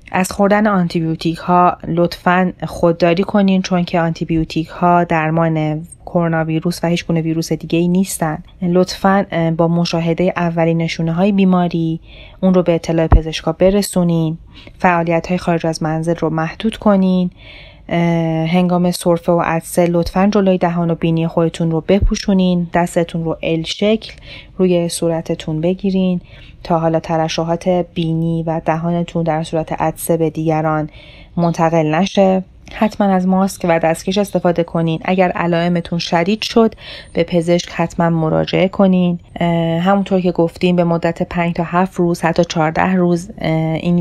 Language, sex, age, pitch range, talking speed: Persian, female, 30-49, 160-180 Hz, 140 wpm